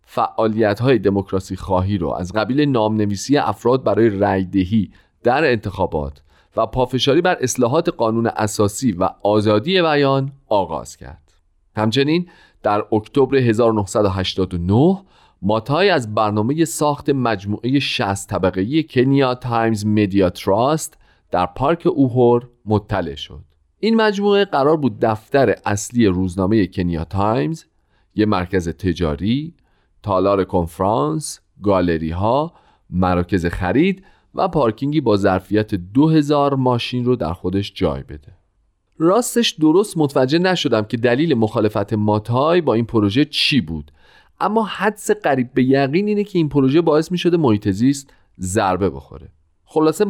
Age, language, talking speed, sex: 40-59, Persian, 120 wpm, male